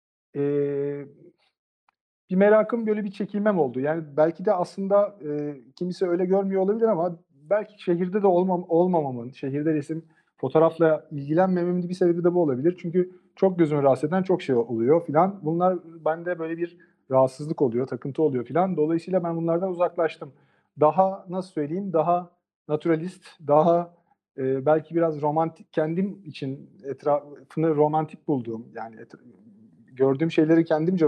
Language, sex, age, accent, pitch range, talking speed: Turkish, male, 40-59, native, 140-180 Hz, 140 wpm